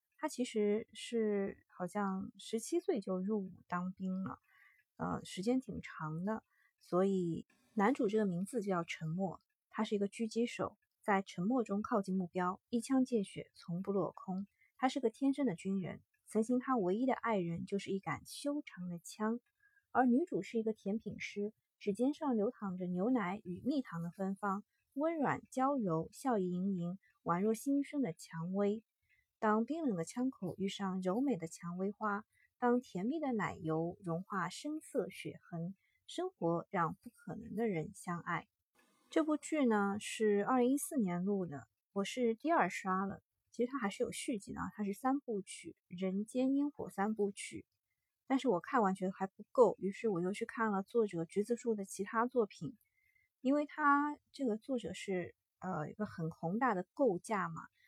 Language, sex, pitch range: Chinese, female, 185-250 Hz